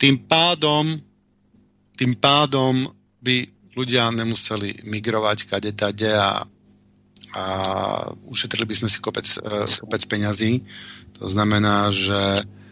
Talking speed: 95 wpm